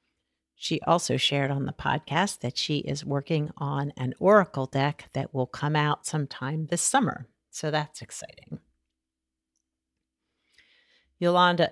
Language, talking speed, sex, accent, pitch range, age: English, 130 wpm, female, American, 135-180 Hz, 50-69